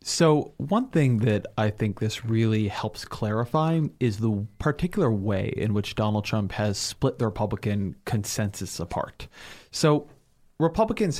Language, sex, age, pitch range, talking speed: English, male, 30-49, 105-130 Hz, 140 wpm